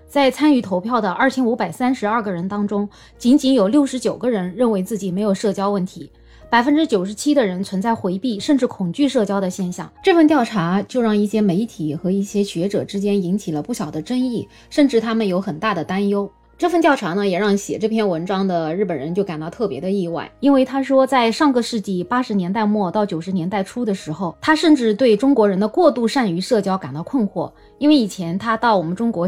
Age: 20-39